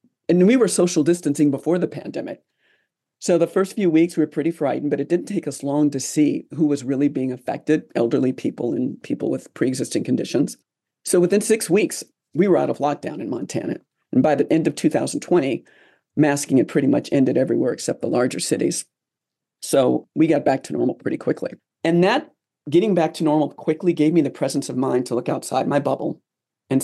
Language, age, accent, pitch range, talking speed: English, 40-59, American, 135-175 Hz, 205 wpm